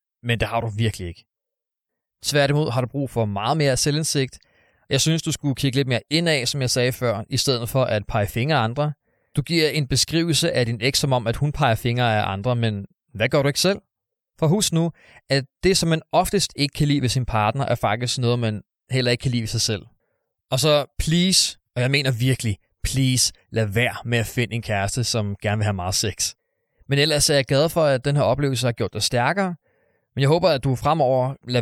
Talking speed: 230 wpm